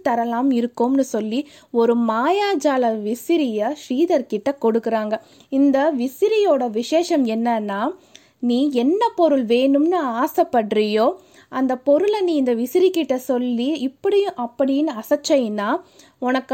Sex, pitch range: female, 235-305 Hz